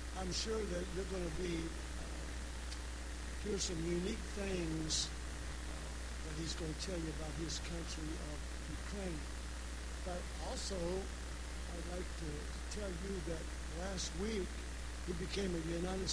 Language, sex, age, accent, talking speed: English, male, 60-79, American, 140 wpm